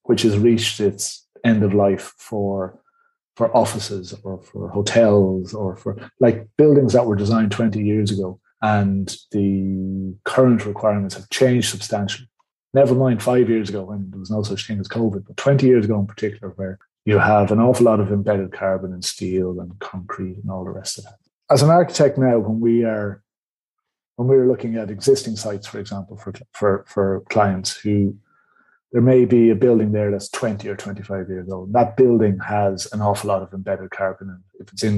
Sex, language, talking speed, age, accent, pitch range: male, English, 195 wpm, 30-49, Irish, 100-115 Hz